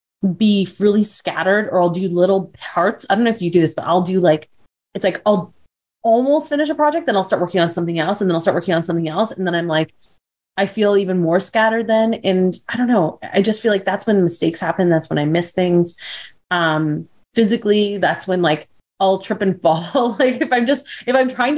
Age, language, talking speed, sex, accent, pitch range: 30-49, English, 235 wpm, female, American, 170-215 Hz